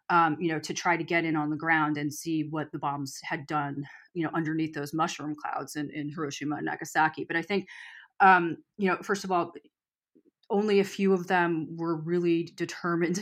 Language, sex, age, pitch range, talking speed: English, female, 30-49, 155-180 Hz, 210 wpm